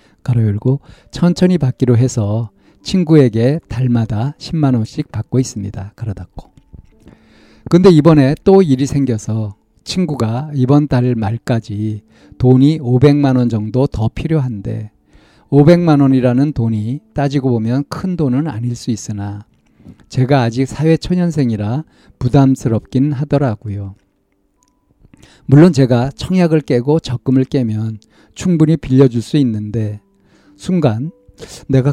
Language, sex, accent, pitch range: Korean, male, native, 110-145 Hz